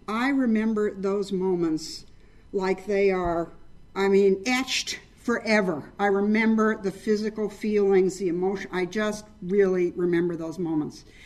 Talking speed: 130 wpm